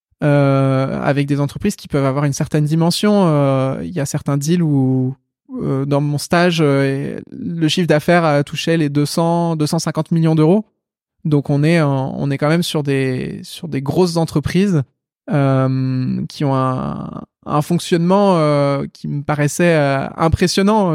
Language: French